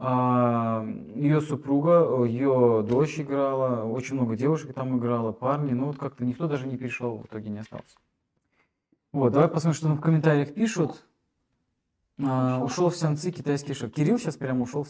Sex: male